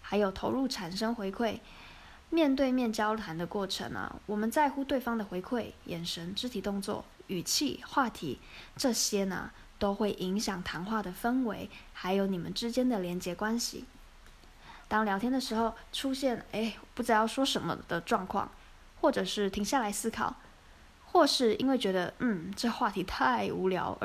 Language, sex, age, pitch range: Chinese, female, 20-39, 195-250 Hz